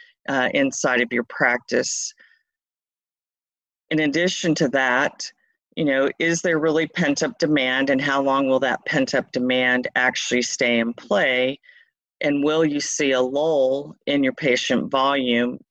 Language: English